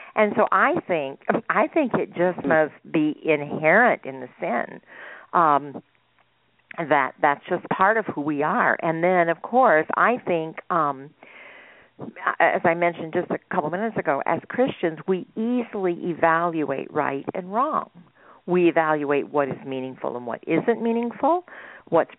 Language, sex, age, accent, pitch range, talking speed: English, female, 50-69, American, 155-210 Hz, 150 wpm